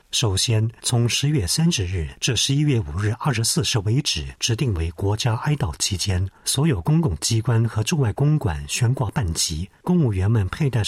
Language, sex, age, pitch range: Chinese, male, 50-69, 95-135 Hz